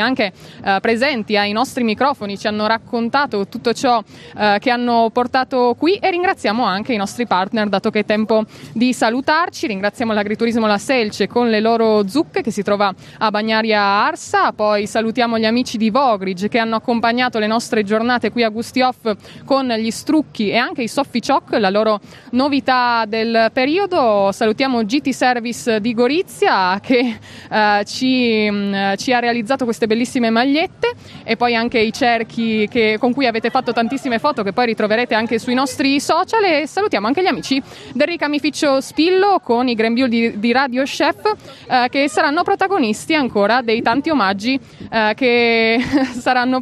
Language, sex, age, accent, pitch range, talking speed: Italian, female, 20-39, native, 220-275 Hz, 165 wpm